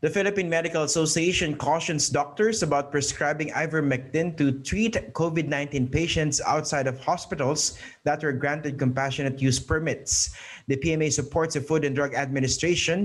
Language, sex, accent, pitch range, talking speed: English, male, Filipino, 135-165 Hz, 140 wpm